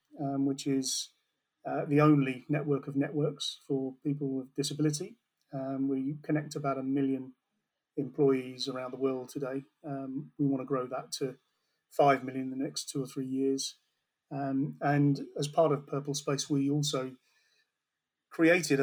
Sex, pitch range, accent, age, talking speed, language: male, 135-150 Hz, British, 40-59, 155 wpm, English